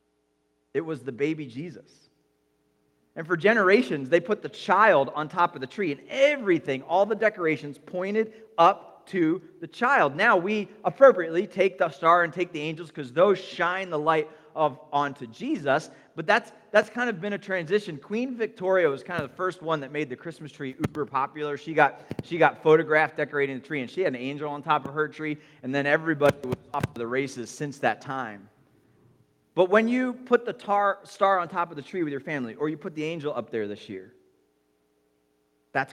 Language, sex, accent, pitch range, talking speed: English, male, American, 130-180 Hz, 200 wpm